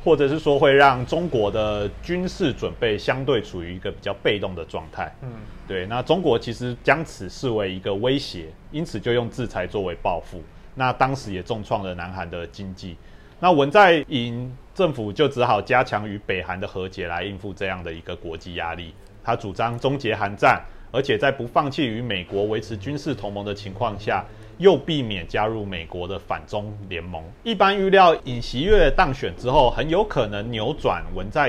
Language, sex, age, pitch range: Chinese, male, 30-49, 95-135 Hz